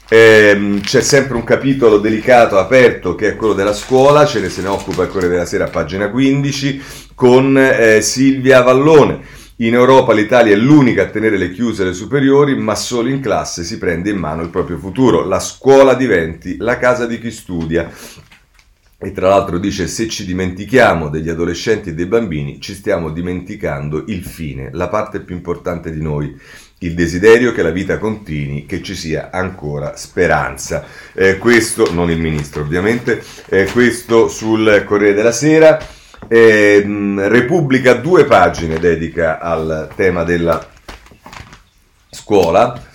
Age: 40-59